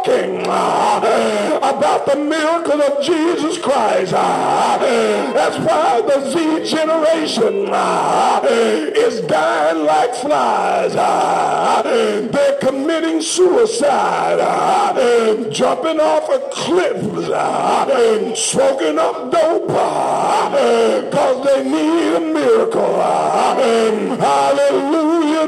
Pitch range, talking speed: 275-340 Hz, 75 wpm